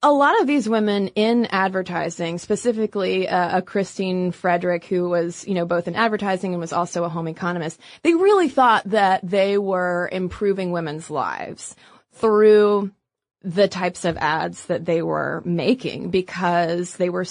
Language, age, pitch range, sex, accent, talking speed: English, 20-39, 175-225 Hz, female, American, 160 wpm